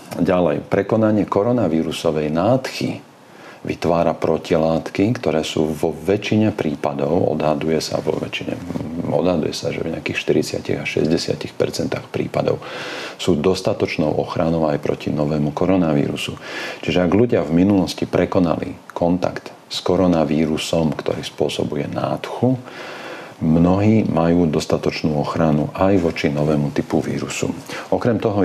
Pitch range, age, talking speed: 75-90 Hz, 40-59, 110 wpm